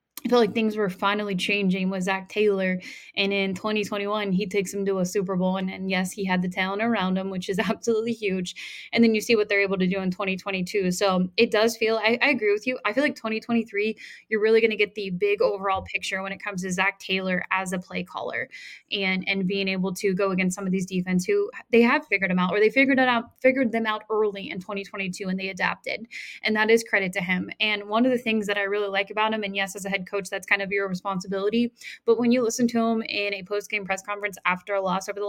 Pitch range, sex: 195-230 Hz, female